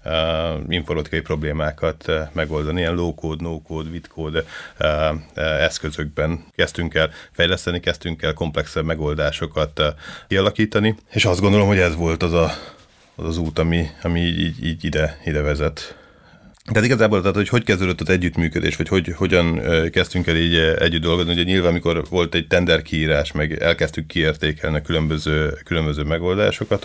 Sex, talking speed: male, 160 wpm